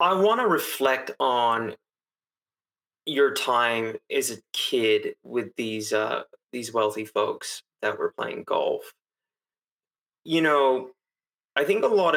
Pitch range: 110-180 Hz